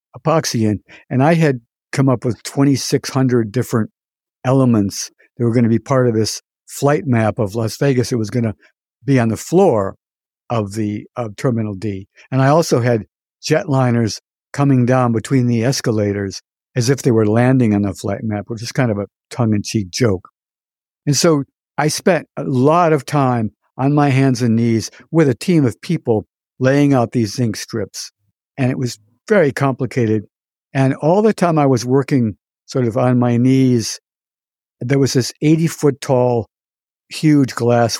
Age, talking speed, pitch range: 60-79, 175 wpm, 110-135 Hz